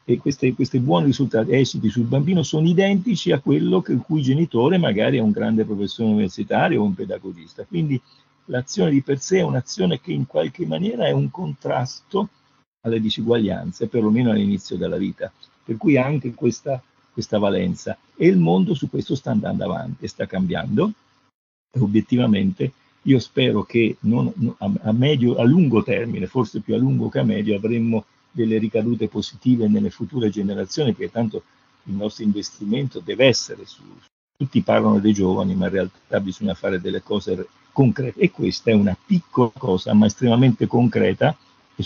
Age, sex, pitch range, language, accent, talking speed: 50-69, male, 105-135 Hz, Italian, native, 165 wpm